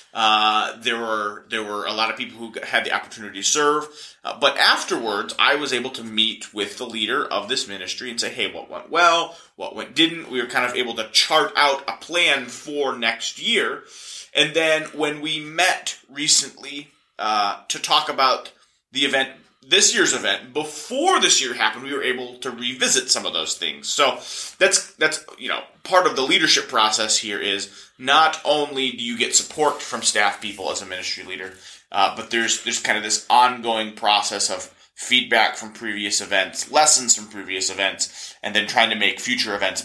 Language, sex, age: English, male, 30-49